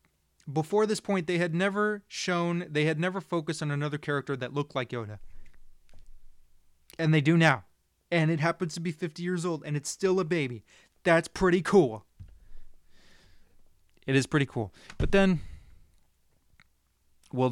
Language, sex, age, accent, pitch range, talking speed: English, male, 30-49, American, 95-145 Hz, 155 wpm